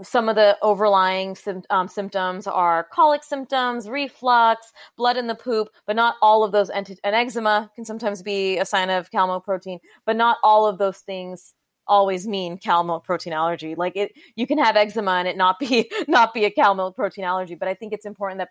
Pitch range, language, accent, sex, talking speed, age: 185-225 Hz, English, American, female, 215 wpm, 30-49